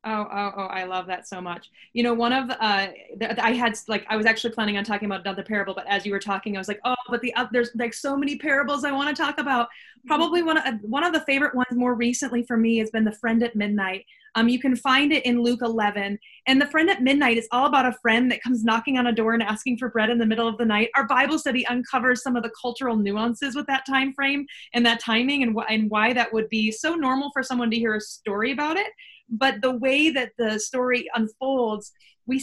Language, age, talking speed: English, 20-39, 265 wpm